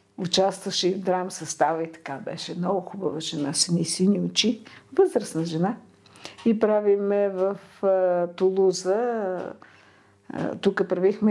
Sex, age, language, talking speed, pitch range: female, 50-69, English, 115 wpm, 165-215 Hz